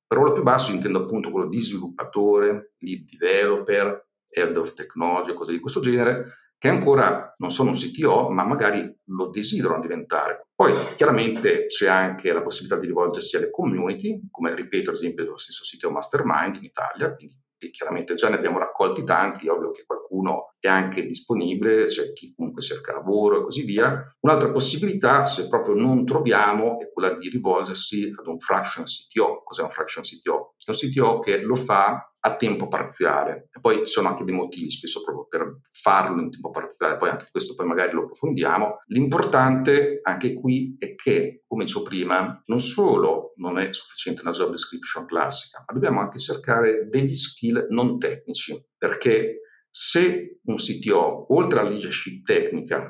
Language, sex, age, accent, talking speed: Italian, male, 50-69, native, 175 wpm